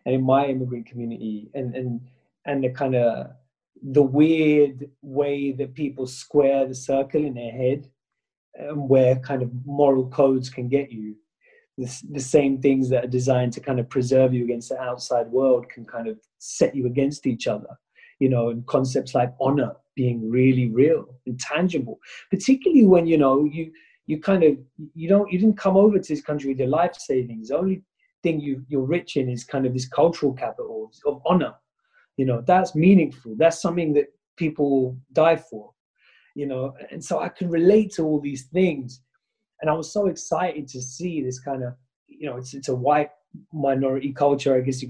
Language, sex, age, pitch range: English, male, 30-49, 130-150 Hz